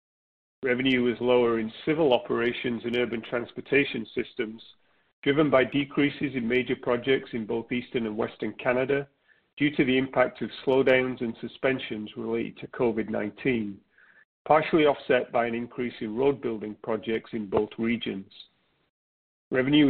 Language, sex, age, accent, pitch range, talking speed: English, male, 40-59, British, 115-135 Hz, 135 wpm